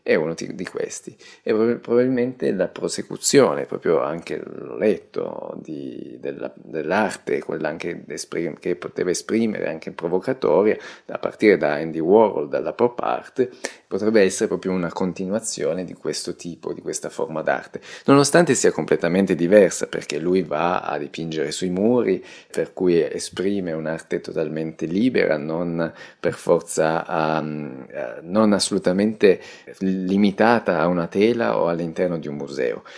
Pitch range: 85-130 Hz